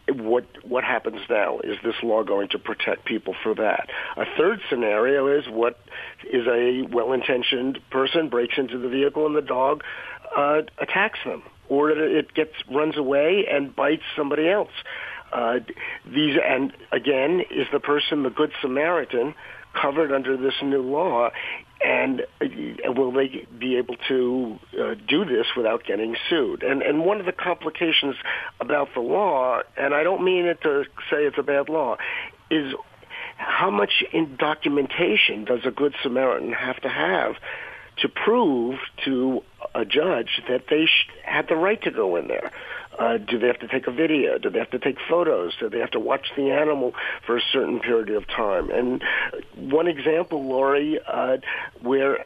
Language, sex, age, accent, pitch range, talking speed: English, male, 50-69, American, 130-165 Hz, 170 wpm